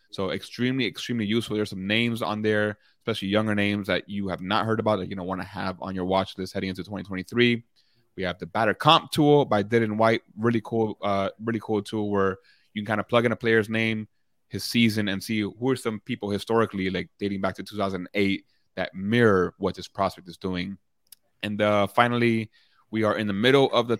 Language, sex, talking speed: English, male, 220 wpm